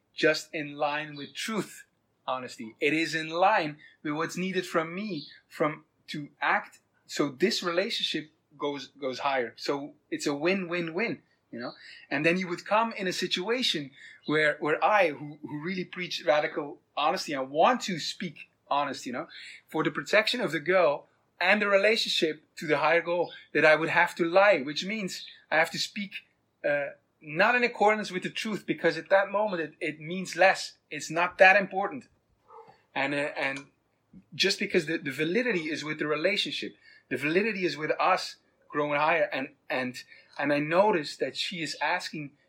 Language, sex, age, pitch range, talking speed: English, male, 30-49, 150-185 Hz, 180 wpm